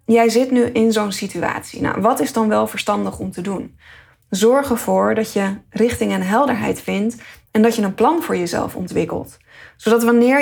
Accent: Dutch